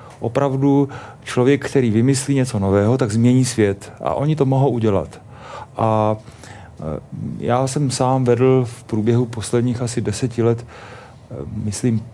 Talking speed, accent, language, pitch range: 130 wpm, native, Czech, 105-125 Hz